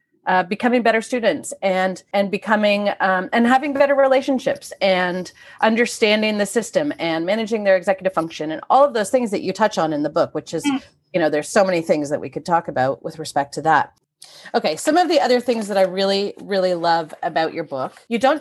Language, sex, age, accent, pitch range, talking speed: English, female, 30-49, American, 175-245 Hz, 215 wpm